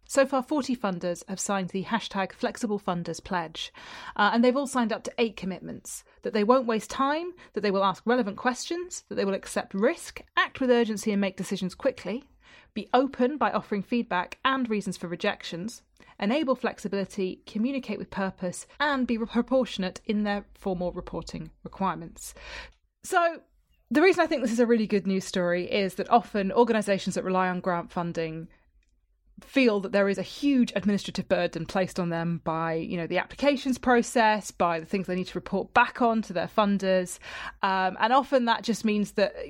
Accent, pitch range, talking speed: British, 185-240 Hz, 185 wpm